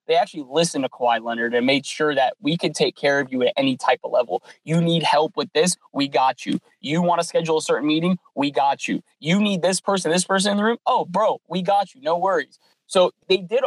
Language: English